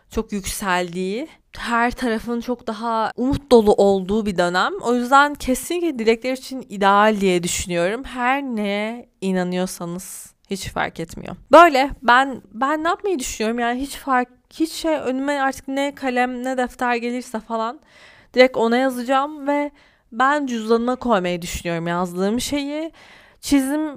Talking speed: 140 wpm